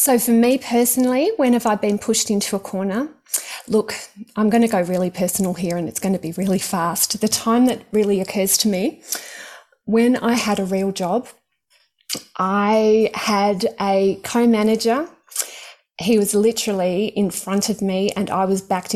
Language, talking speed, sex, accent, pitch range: English, 175 wpm, female, Australian, 195-240 Hz